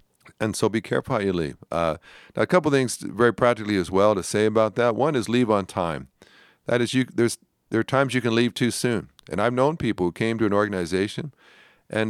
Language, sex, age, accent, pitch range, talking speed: English, male, 50-69, American, 95-120 Hz, 240 wpm